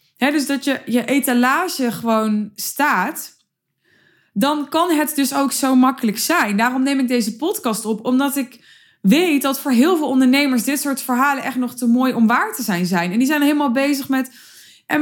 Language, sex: Dutch, female